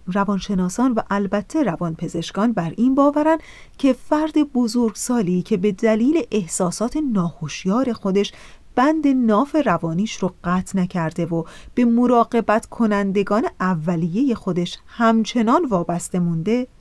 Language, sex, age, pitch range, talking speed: Persian, female, 30-49, 190-265 Hz, 110 wpm